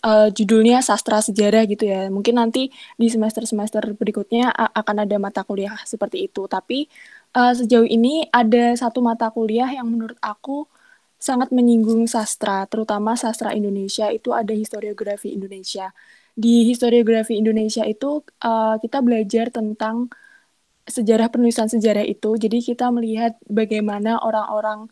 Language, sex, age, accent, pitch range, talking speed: Indonesian, female, 20-39, native, 215-245 Hz, 130 wpm